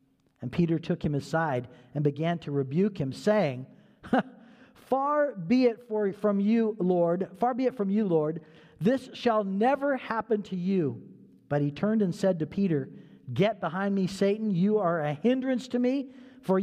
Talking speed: 170 wpm